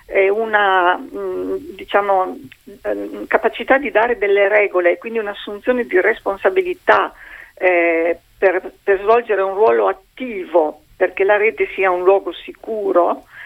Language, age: Italian, 50-69